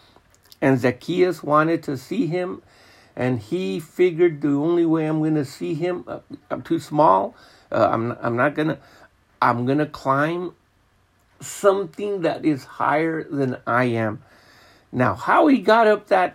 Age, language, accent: 60-79, English, American